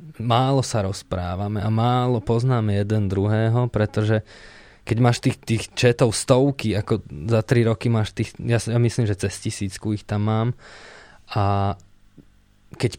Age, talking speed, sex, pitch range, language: 20-39, 145 wpm, male, 100-120 Hz, Slovak